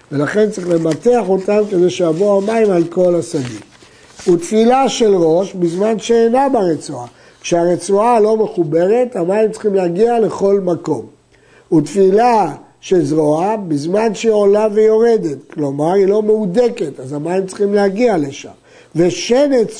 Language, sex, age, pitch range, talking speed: Hebrew, male, 60-79, 165-220 Hz, 125 wpm